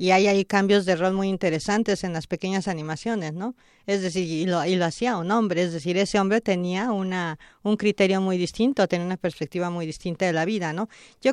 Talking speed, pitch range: 220 wpm, 180-230 Hz